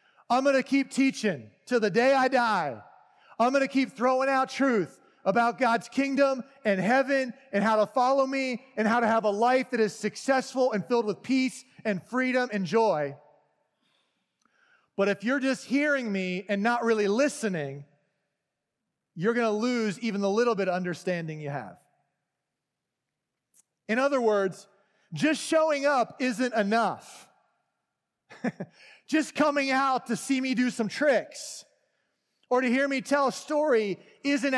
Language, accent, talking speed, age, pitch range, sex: English, American, 155 wpm, 30-49, 200-265 Hz, male